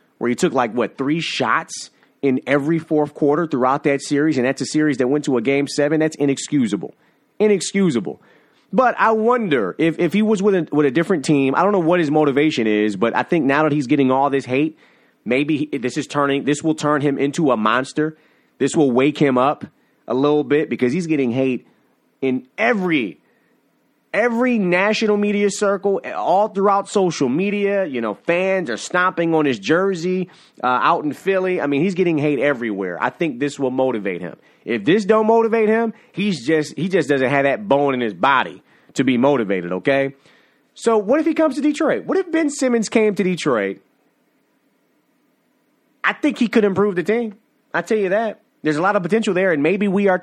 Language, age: English, 30-49